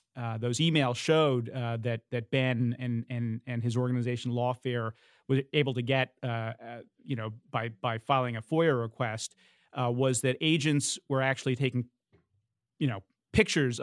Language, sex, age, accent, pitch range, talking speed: English, male, 30-49, American, 120-145 Hz, 165 wpm